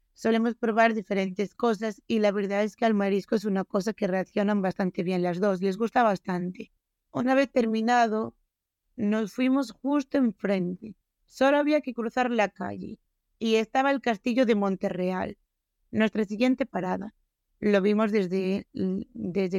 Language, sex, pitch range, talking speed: Spanish, female, 195-240 Hz, 155 wpm